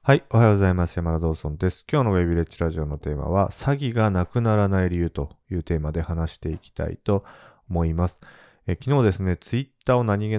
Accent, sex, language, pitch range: native, male, Japanese, 80-110 Hz